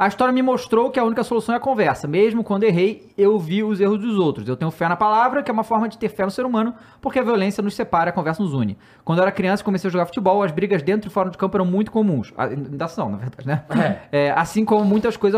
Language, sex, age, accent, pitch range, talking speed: Portuguese, male, 20-39, Brazilian, 170-210 Hz, 285 wpm